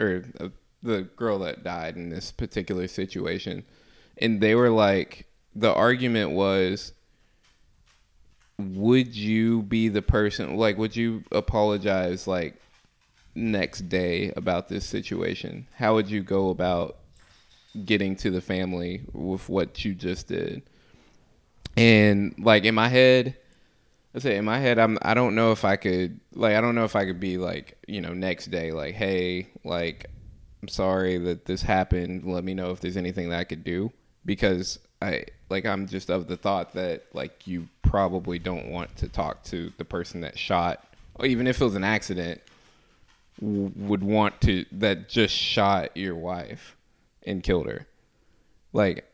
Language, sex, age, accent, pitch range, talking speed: English, male, 20-39, American, 90-110 Hz, 165 wpm